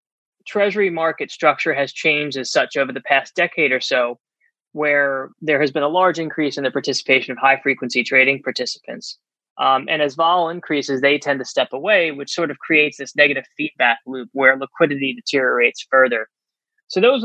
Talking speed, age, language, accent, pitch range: 180 wpm, 20-39, English, American, 135-170 Hz